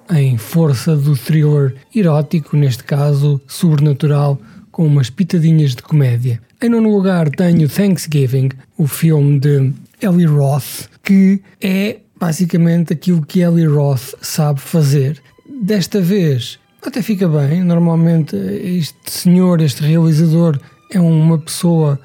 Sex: male